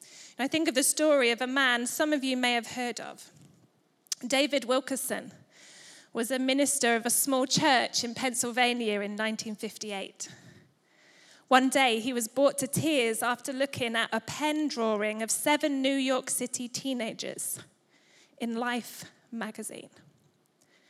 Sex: female